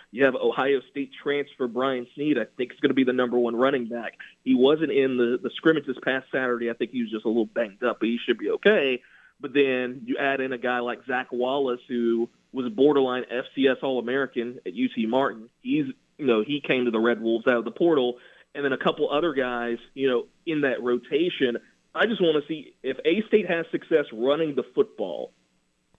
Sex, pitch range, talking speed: male, 120-145 Hz, 220 wpm